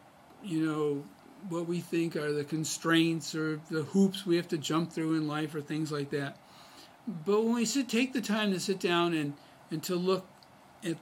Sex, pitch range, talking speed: male, 150-175 Hz, 200 wpm